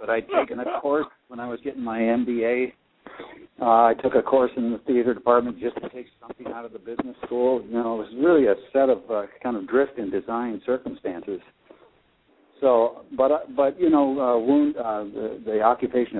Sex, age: male, 60-79